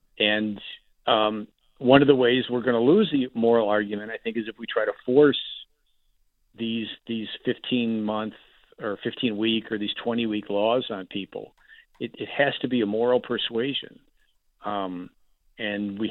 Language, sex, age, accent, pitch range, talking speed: English, male, 50-69, American, 110-125 Hz, 160 wpm